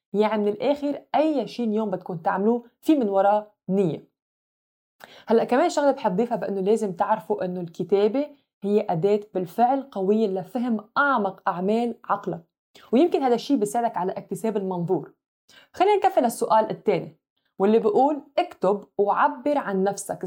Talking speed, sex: 135 wpm, female